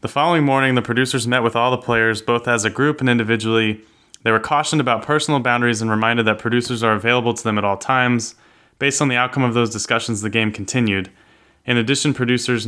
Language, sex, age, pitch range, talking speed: English, male, 20-39, 115-140 Hz, 220 wpm